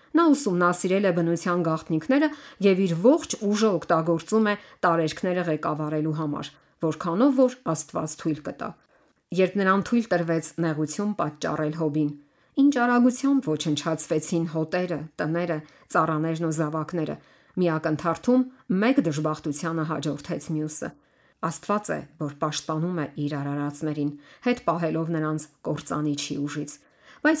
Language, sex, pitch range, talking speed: English, female, 155-195 Hz, 75 wpm